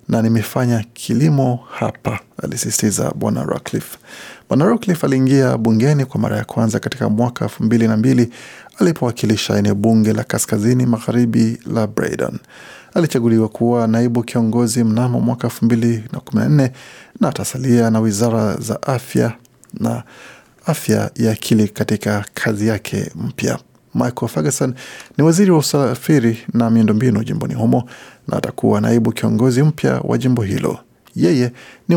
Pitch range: 110-125 Hz